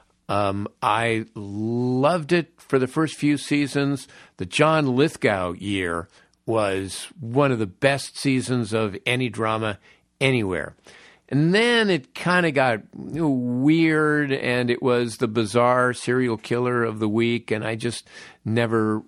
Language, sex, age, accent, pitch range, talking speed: English, male, 50-69, American, 105-130 Hz, 140 wpm